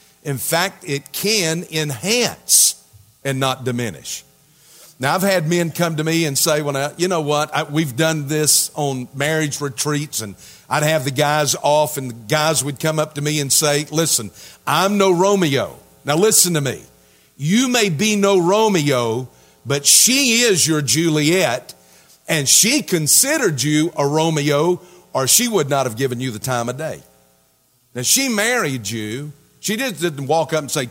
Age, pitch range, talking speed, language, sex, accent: 50-69, 130-175 Hz, 175 wpm, English, male, American